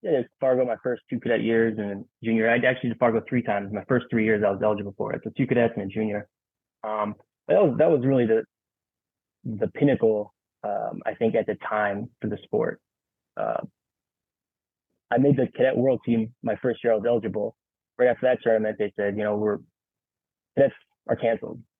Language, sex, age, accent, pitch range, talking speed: English, male, 20-39, American, 105-115 Hz, 205 wpm